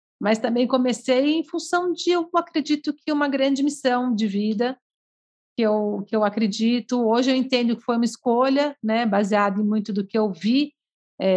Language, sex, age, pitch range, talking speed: Portuguese, female, 50-69, 210-270 Hz, 185 wpm